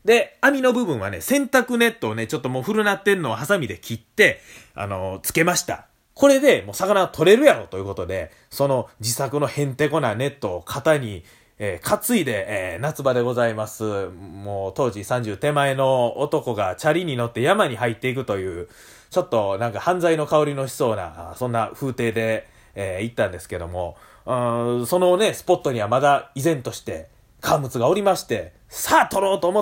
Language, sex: Japanese, male